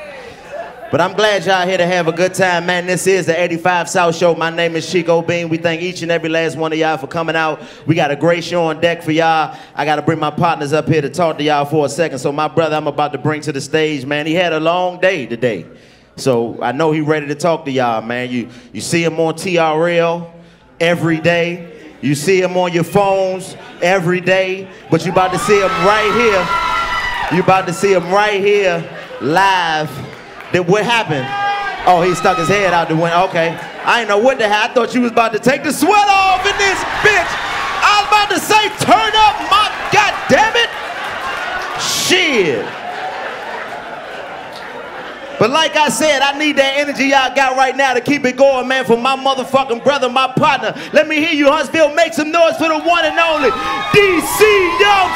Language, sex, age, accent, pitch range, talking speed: English, male, 30-49, American, 160-265 Hz, 215 wpm